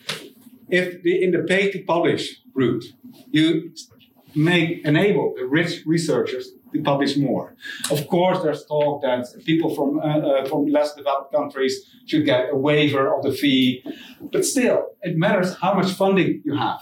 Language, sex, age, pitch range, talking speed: Dutch, male, 50-69, 150-235 Hz, 150 wpm